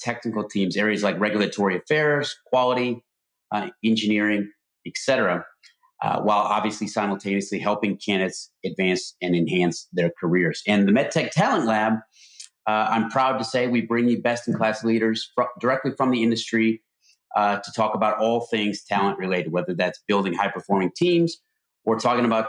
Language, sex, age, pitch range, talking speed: English, male, 30-49, 105-125 Hz, 150 wpm